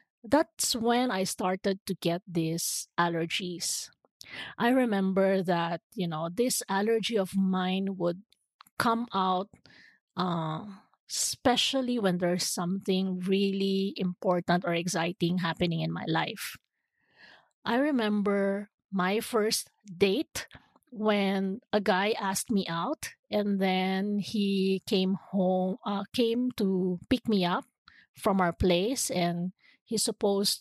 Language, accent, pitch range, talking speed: English, Filipino, 180-215 Hz, 120 wpm